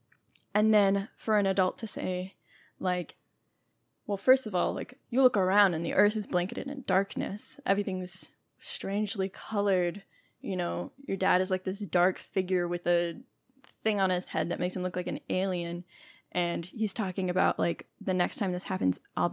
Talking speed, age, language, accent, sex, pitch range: 185 wpm, 10-29, English, American, female, 180-205 Hz